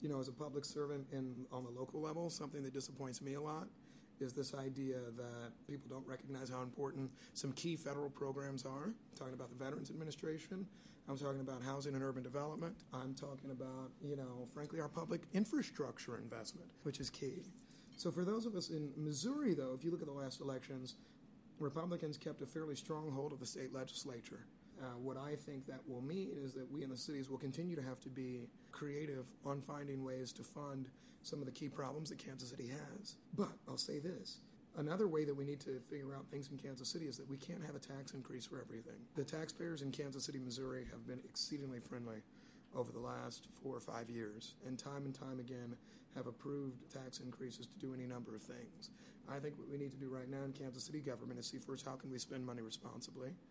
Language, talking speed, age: English, 220 wpm, 30-49